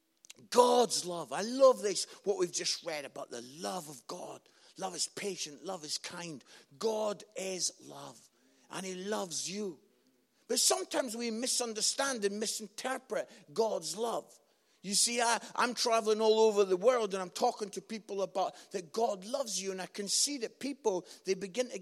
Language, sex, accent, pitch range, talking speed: English, male, British, 170-235 Hz, 170 wpm